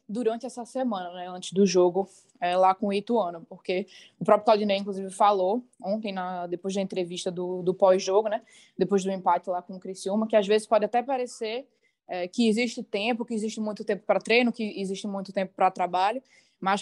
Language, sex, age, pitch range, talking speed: Portuguese, female, 20-39, 185-225 Hz, 205 wpm